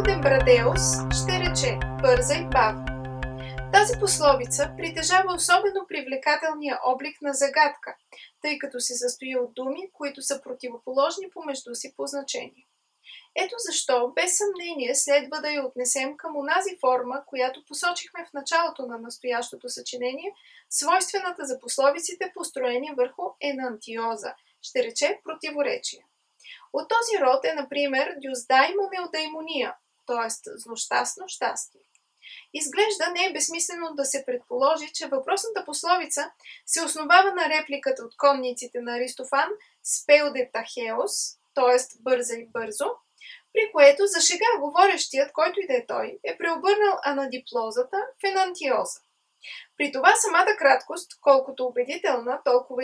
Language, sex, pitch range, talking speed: Bulgarian, female, 255-370 Hz, 125 wpm